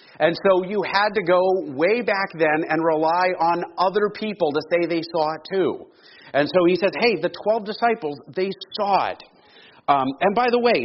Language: English